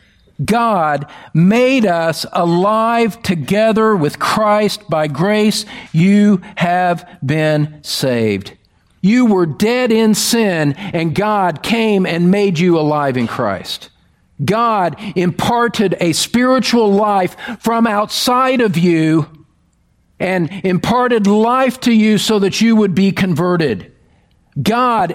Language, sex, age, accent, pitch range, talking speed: English, male, 50-69, American, 155-225 Hz, 115 wpm